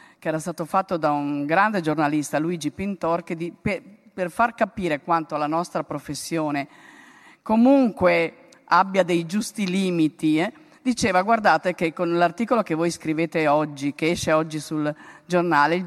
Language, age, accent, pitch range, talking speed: Italian, 50-69, native, 160-200 Hz, 150 wpm